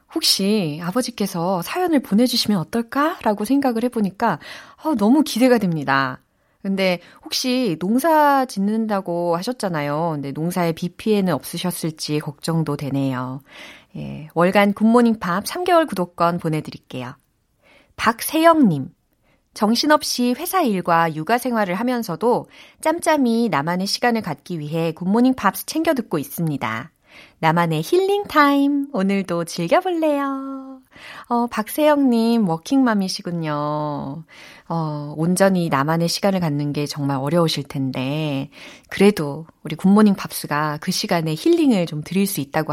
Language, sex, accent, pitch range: Korean, female, native, 155-245 Hz